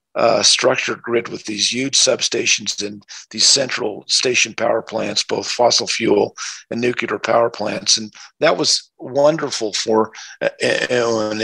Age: 50-69